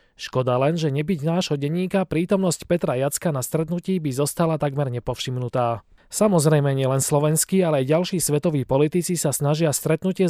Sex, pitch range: male, 135-175 Hz